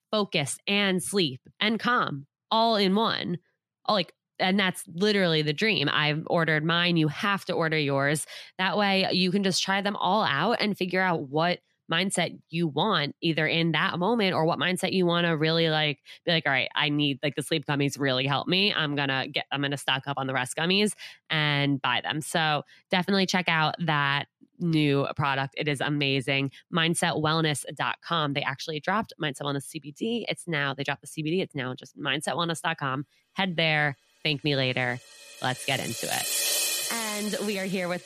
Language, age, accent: English, 20-39, American